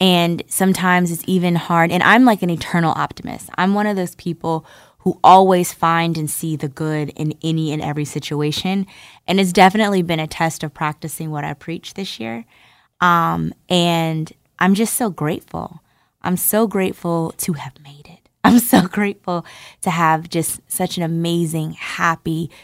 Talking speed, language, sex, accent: 170 wpm, English, female, American